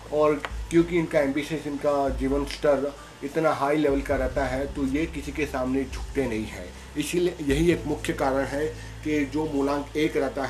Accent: native